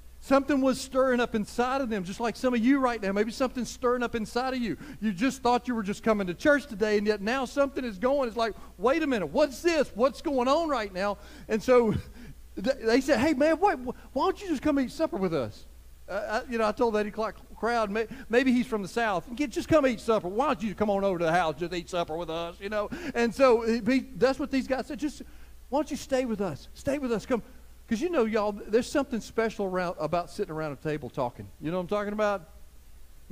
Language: English